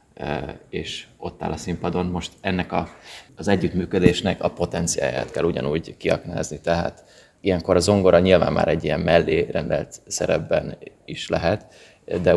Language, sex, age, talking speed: Hungarian, male, 20-39, 140 wpm